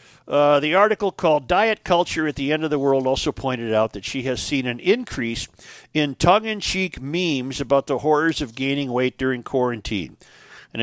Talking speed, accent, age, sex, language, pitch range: 190 wpm, American, 50-69, male, English, 125-155 Hz